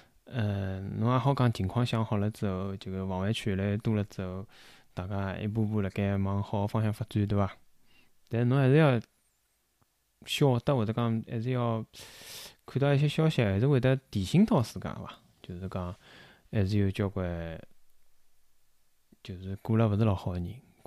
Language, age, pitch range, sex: Chinese, 20-39, 100-125 Hz, male